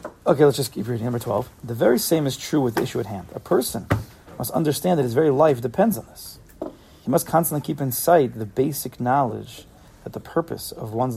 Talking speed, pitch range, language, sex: 225 wpm, 115-150 Hz, English, male